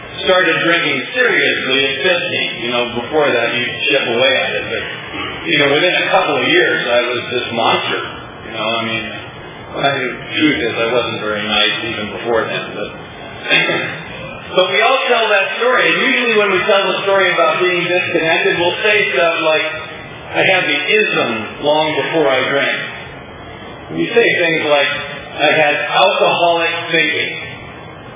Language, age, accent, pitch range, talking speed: English, 30-49, American, 135-185 Hz, 165 wpm